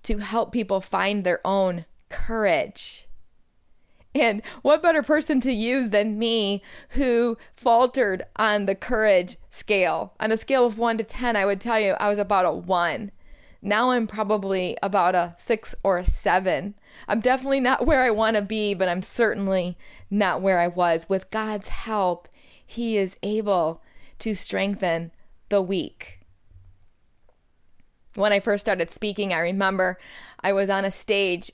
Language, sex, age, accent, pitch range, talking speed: English, female, 20-39, American, 185-220 Hz, 160 wpm